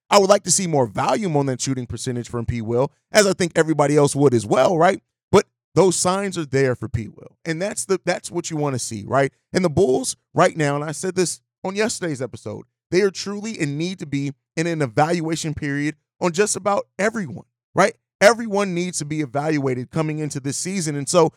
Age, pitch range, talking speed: 30-49, 135-180 Hz, 225 wpm